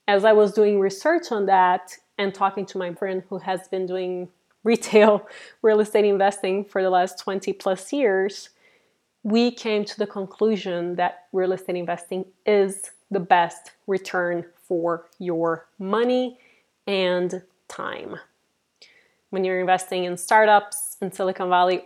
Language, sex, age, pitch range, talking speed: English, female, 20-39, 180-220 Hz, 145 wpm